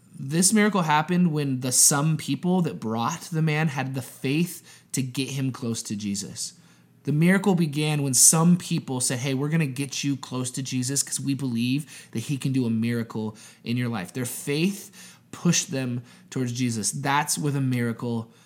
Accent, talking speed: American, 190 wpm